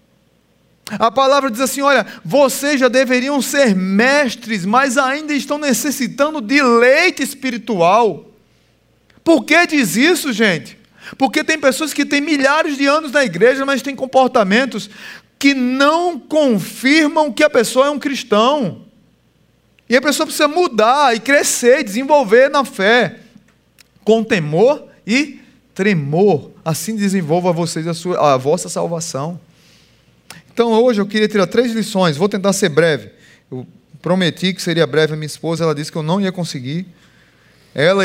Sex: male